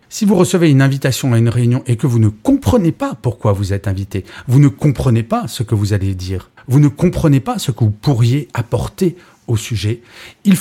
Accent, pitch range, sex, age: French, 110-150 Hz, male, 40-59